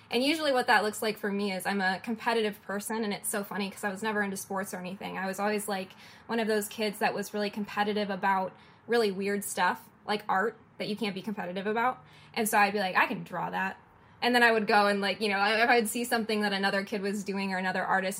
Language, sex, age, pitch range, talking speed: English, female, 10-29, 205-240 Hz, 260 wpm